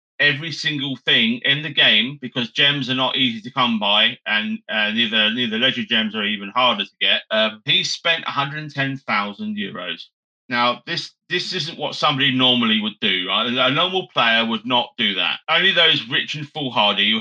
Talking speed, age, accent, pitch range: 190 wpm, 30-49, British, 115-185 Hz